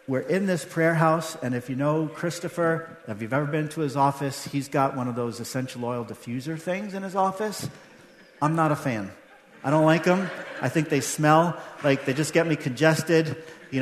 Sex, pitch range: male, 140-190 Hz